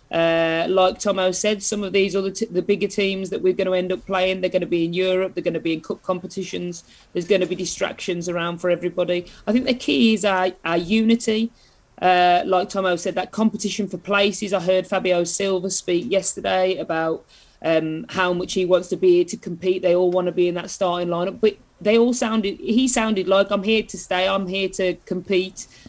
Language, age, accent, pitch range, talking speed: English, 40-59, British, 180-210 Hz, 225 wpm